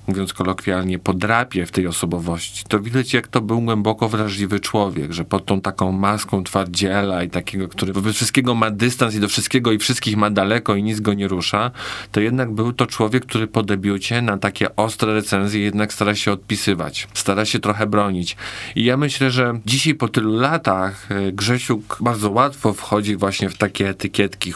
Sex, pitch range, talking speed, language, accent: male, 100-125 Hz, 185 wpm, Polish, native